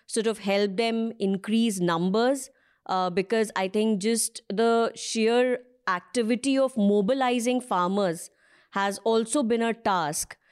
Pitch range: 200-240 Hz